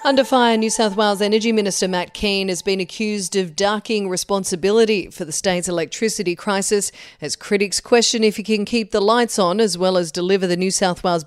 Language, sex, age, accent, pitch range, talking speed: English, female, 40-59, Australian, 180-220 Hz, 200 wpm